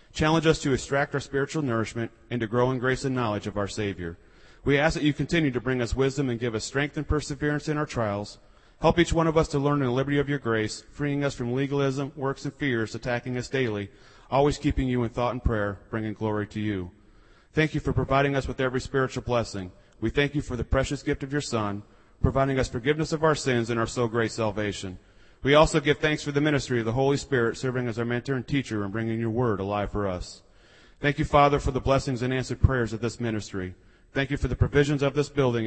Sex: male